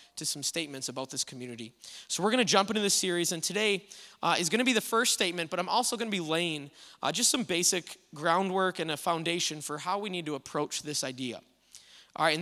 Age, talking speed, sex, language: 20-39, 230 wpm, male, English